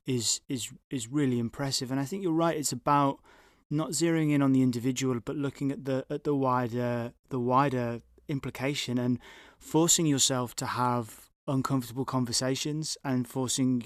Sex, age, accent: male, 20-39, British